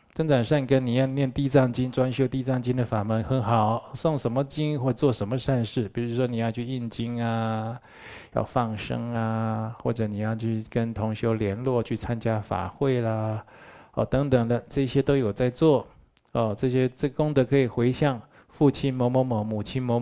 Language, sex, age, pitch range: Chinese, male, 20-39, 110-135 Hz